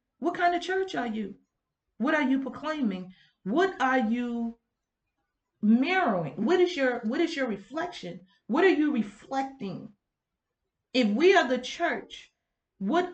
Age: 40-59